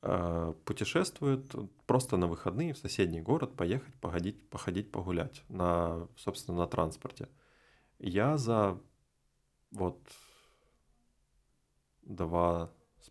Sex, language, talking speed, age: male, Ukrainian, 90 wpm, 30-49